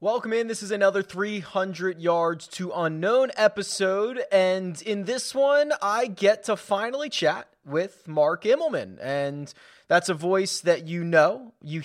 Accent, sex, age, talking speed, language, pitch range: American, male, 20-39, 150 wpm, English, 145-185 Hz